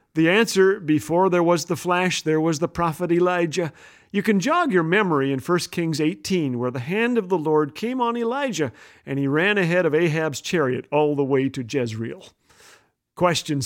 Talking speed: 190 wpm